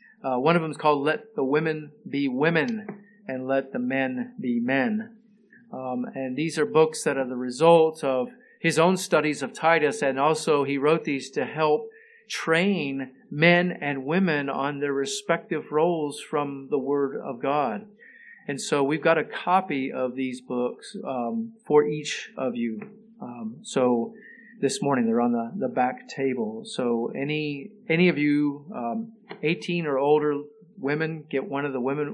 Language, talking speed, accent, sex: English, 170 wpm, American, male